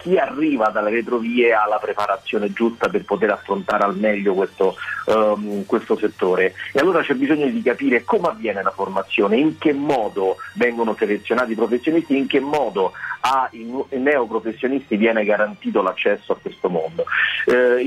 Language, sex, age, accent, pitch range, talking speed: Italian, male, 40-59, native, 110-160 Hz, 150 wpm